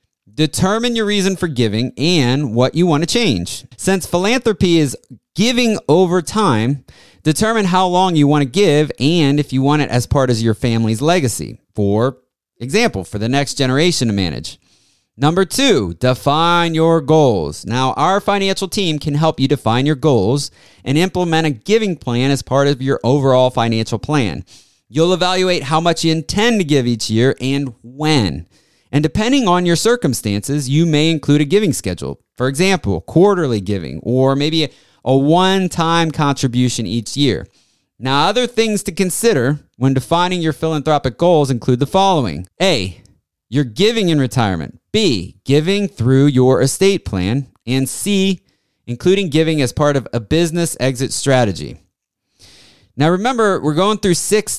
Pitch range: 125-175 Hz